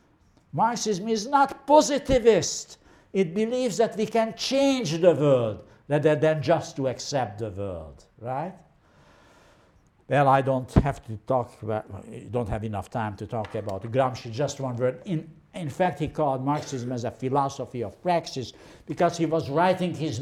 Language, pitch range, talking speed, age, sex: English, 115-155 Hz, 160 wpm, 60-79, male